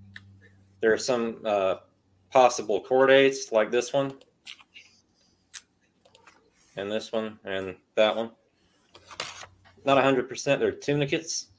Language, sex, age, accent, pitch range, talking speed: English, male, 30-49, American, 105-130 Hz, 100 wpm